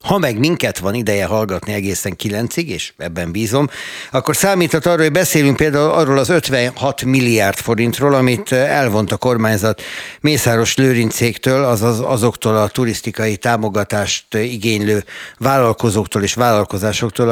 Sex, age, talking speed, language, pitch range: male, 60-79, 130 wpm, Hungarian, 105-130 Hz